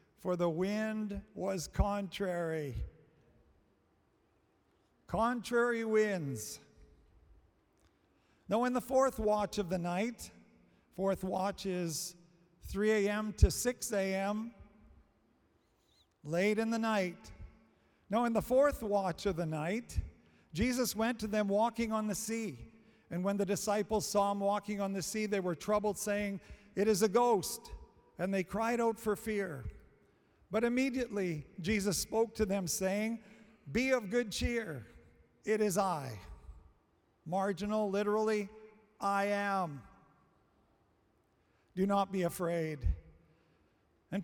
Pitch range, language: 180-220 Hz, English